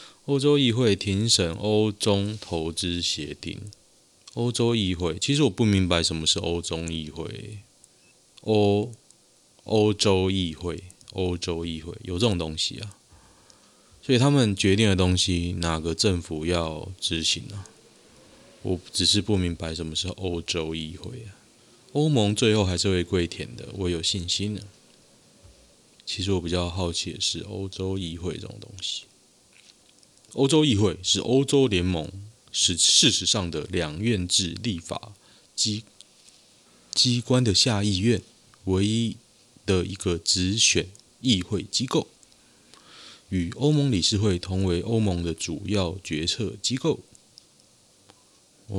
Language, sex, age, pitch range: Chinese, male, 20-39, 85-110 Hz